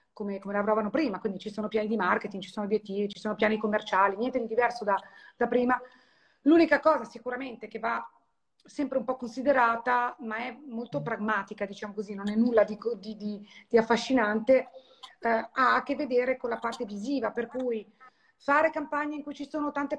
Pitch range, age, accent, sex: 220-265 Hz, 30-49, native, female